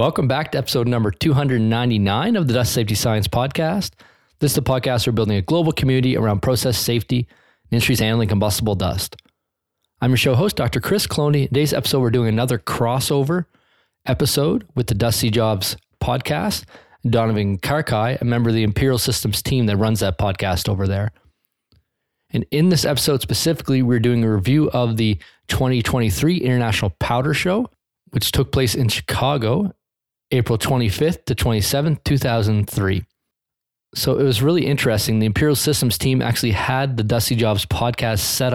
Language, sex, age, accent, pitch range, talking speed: English, male, 20-39, American, 110-135 Hz, 160 wpm